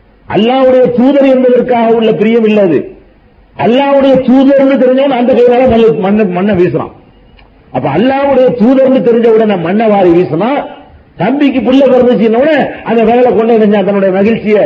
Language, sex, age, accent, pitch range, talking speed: Tamil, male, 50-69, native, 170-235 Hz, 80 wpm